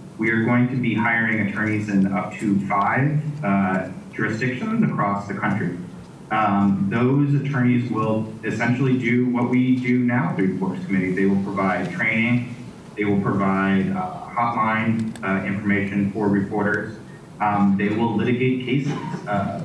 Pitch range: 100-125 Hz